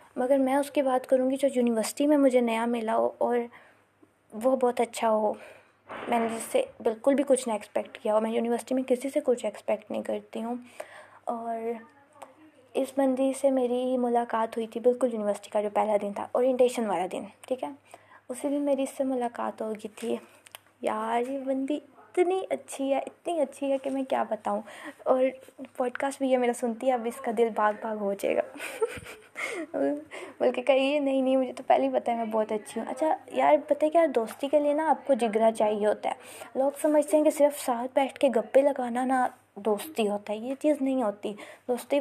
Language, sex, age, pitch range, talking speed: Urdu, female, 20-39, 230-275 Hz, 205 wpm